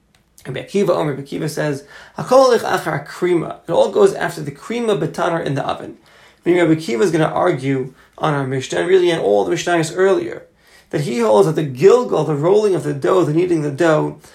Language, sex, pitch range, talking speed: English, male, 145-180 Hz, 190 wpm